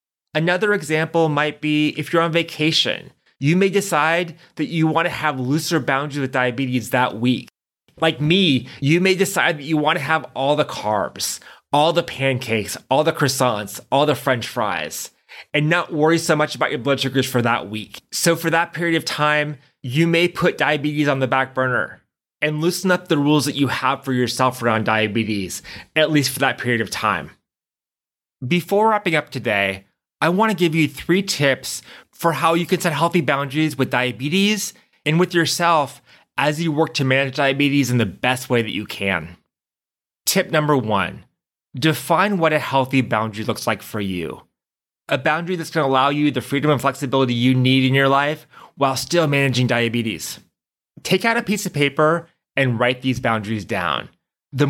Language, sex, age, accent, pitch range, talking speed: English, male, 30-49, American, 130-165 Hz, 185 wpm